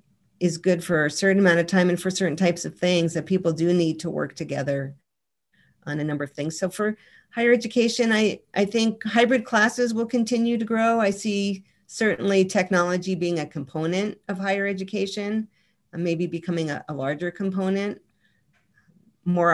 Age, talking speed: 40-59, 175 wpm